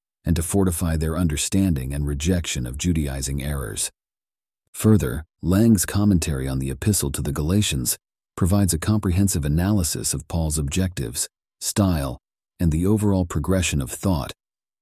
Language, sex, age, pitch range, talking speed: English, male, 40-59, 75-95 Hz, 135 wpm